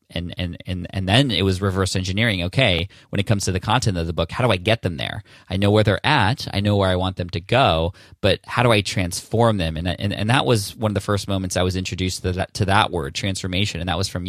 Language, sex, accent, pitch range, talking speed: English, male, American, 95-110 Hz, 280 wpm